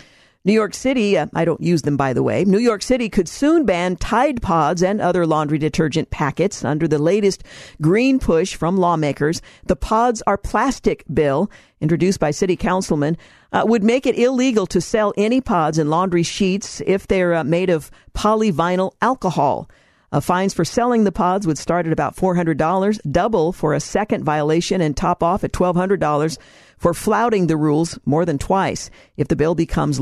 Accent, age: American, 50-69